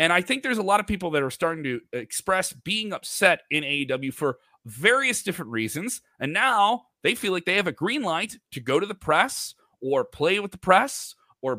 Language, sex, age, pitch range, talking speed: English, male, 30-49, 135-195 Hz, 215 wpm